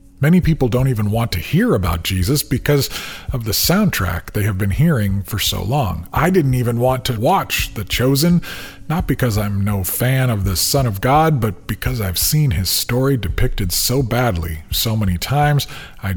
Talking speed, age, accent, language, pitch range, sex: 190 wpm, 40-59, American, English, 95-130 Hz, male